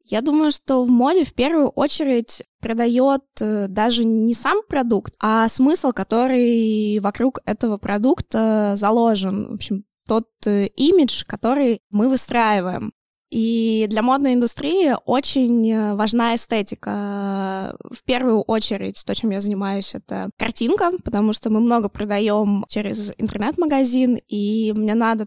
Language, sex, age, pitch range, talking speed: Russian, female, 20-39, 210-250 Hz, 125 wpm